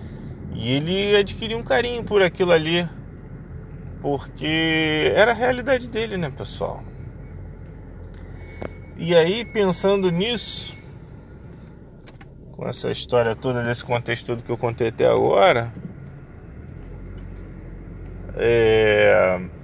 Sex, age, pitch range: male, 20-39, 110-160 Hz